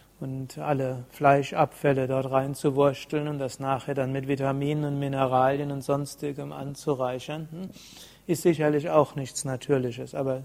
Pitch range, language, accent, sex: 135-155 Hz, German, German, male